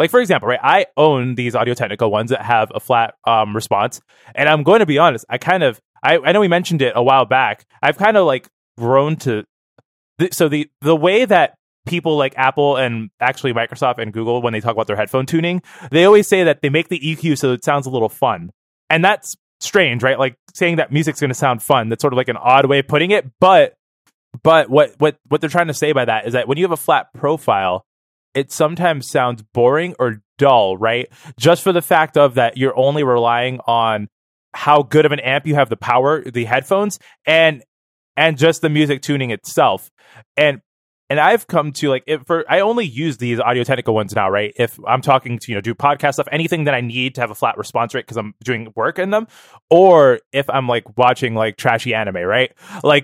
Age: 20-39